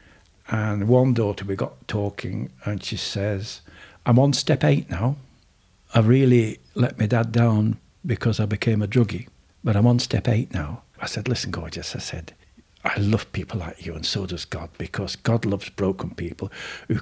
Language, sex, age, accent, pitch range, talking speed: English, male, 60-79, British, 95-120 Hz, 185 wpm